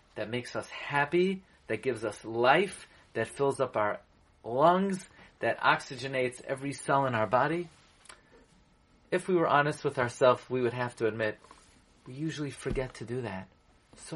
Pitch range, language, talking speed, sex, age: 125-165 Hz, English, 160 wpm, male, 40-59